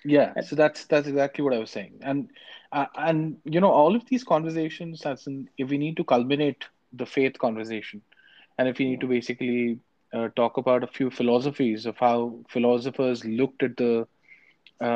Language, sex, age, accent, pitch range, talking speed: English, male, 20-39, Indian, 115-135 Hz, 190 wpm